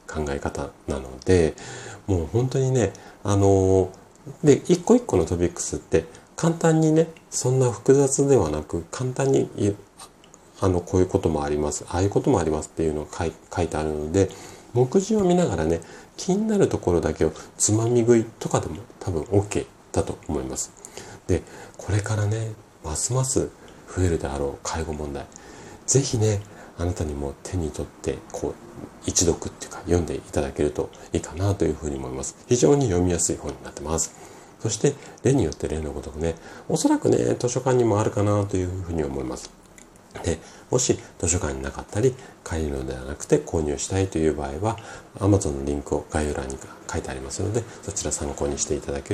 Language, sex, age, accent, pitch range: Japanese, male, 40-59, native, 75-110 Hz